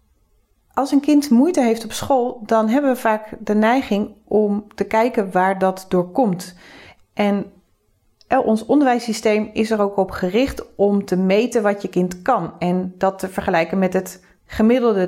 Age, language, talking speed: 40-59, Dutch, 165 wpm